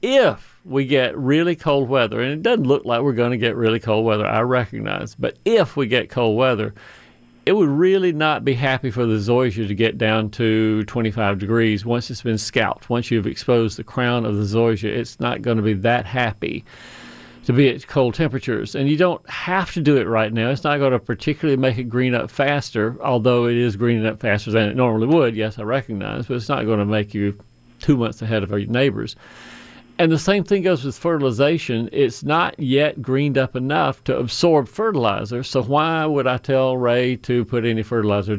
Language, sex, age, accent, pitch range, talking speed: English, male, 50-69, American, 110-140 Hz, 215 wpm